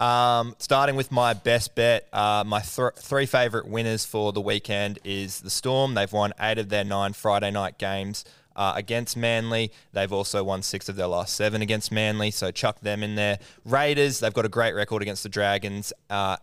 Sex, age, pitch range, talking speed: male, 20-39, 105-125 Hz, 195 wpm